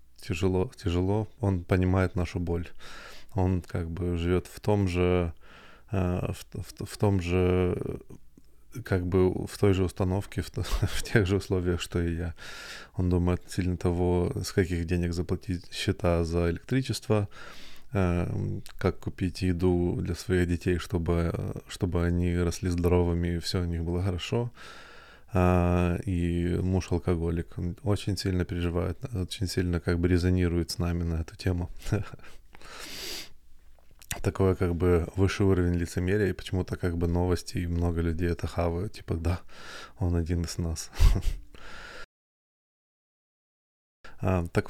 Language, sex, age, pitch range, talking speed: Russian, male, 20-39, 85-95 Hz, 135 wpm